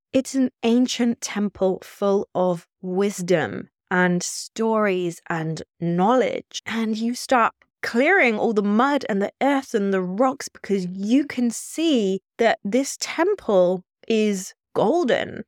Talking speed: 130 wpm